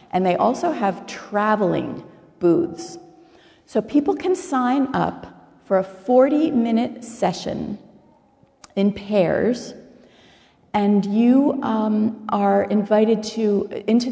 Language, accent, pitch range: English, American, 180-235 Hz